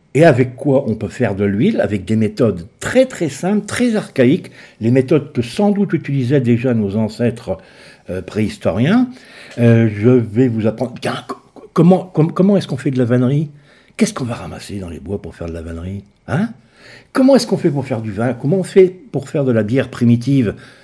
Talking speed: 200 wpm